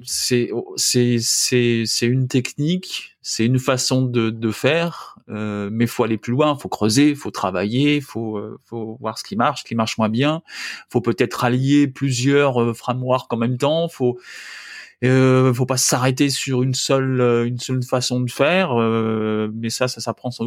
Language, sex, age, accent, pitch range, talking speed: French, male, 20-39, French, 120-150 Hz, 190 wpm